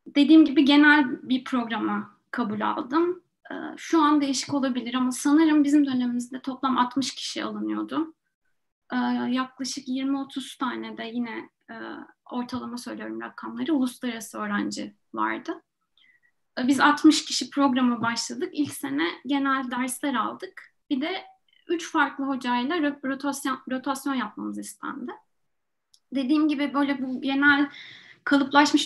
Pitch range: 250-290 Hz